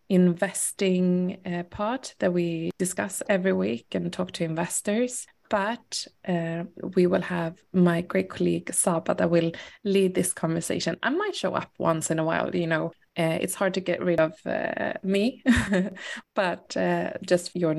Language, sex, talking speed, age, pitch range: Swedish, female, 170 wpm, 20-39, 170-195 Hz